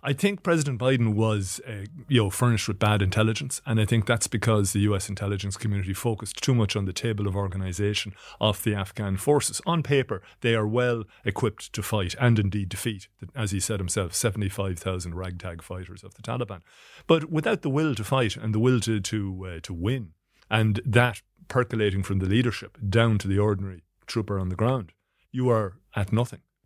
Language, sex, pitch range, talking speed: English, male, 100-125 Hz, 195 wpm